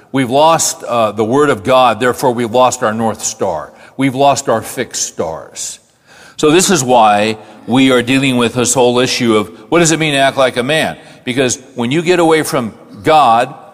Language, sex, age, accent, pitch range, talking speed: English, male, 50-69, American, 120-150 Hz, 200 wpm